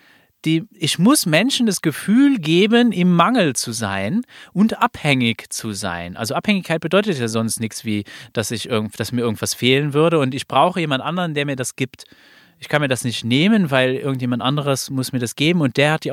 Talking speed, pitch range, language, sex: 195 wpm, 120-175 Hz, German, male